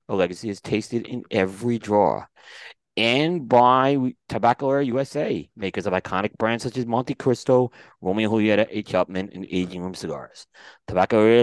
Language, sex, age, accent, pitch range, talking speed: English, male, 30-49, American, 100-130 Hz, 145 wpm